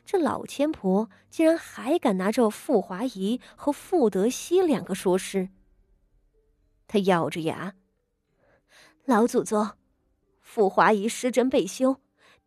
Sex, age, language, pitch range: female, 20-39, Chinese, 175-260 Hz